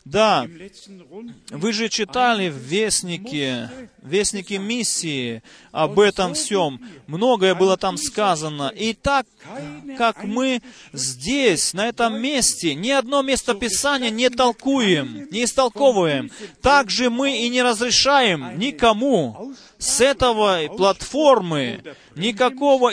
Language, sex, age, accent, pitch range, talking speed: Russian, male, 30-49, native, 200-255 Hz, 110 wpm